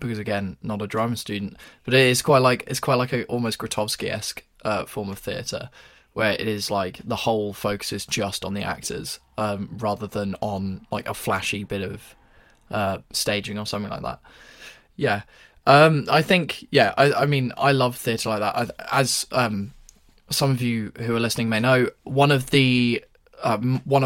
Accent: British